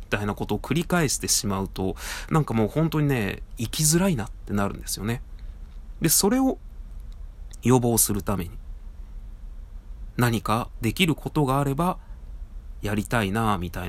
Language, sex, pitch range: Japanese, male, 90-130 Hz